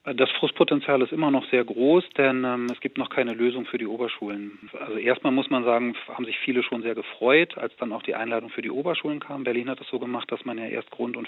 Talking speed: 255 wpm